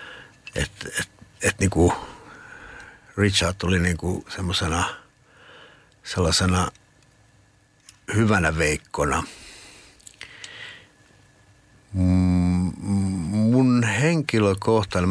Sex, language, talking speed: male, Finnish, 50 wpm